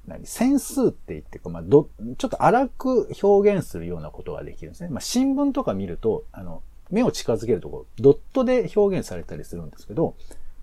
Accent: native